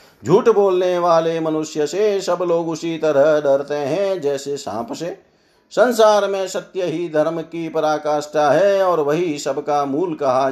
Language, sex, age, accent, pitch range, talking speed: Hindi, male, 50-69, native, 140-185 Hz, 155 wpm